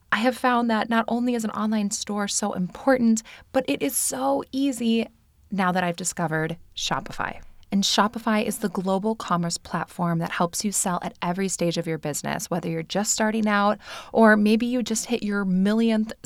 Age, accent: 20-39, American